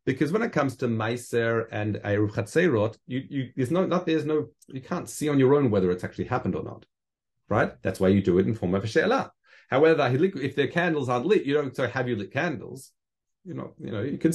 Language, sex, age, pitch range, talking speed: English, male, 30-49, 105-140 Hz, 245 wpm